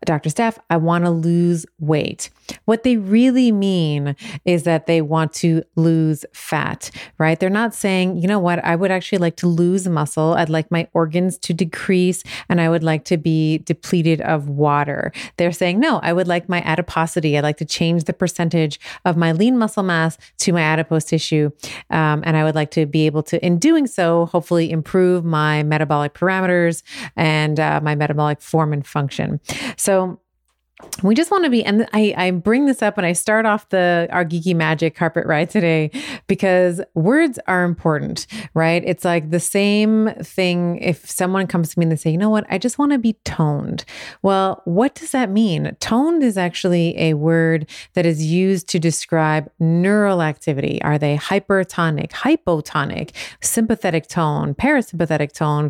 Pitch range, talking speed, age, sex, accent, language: 160-190 Hz, 185 wpm, 30-49, female, American, English